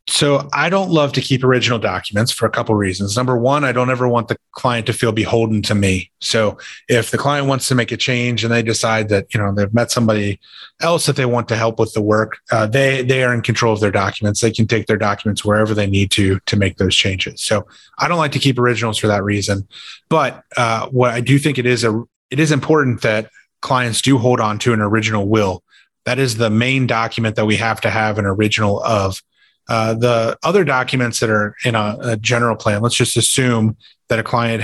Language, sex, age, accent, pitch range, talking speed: English, male, 30-49, American, 105-125 Hz, 235 wpm